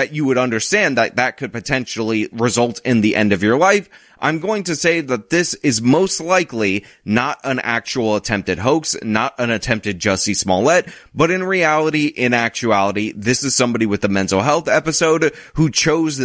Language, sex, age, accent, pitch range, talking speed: English, male, 30-49, American, 110-150 Hz, 180 wpm